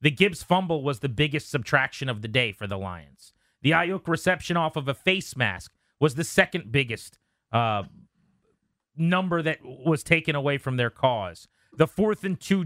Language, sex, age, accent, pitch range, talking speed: English, male, 30-49, American, 140-180 Hz, 180 wpm